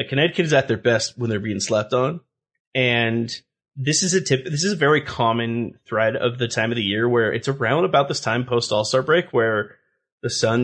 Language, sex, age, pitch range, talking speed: English, male, 30-49, 115-140 Hz, 220 wpm